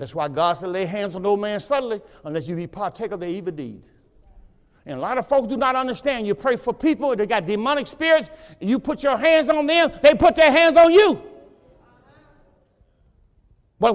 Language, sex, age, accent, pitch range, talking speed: English, male, 60-79, American, 185-305 Hz, 205 wpm